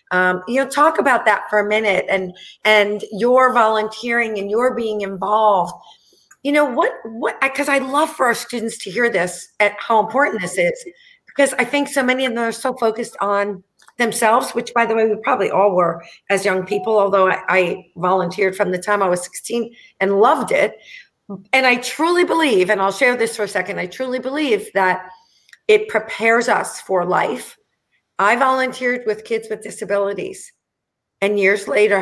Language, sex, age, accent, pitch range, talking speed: English, female, 40-59, American, 195-260 Hz, 185 wpm